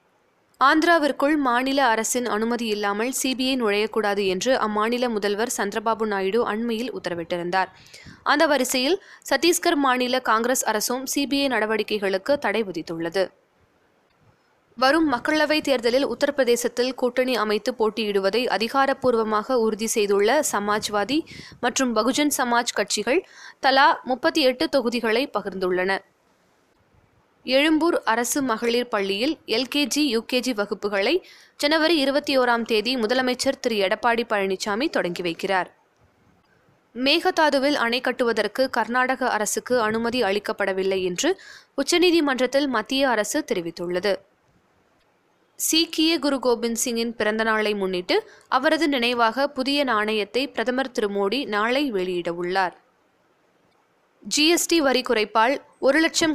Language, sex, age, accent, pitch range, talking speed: Tamil, female, 20-39, native, 210-275 Hz, 100 wpm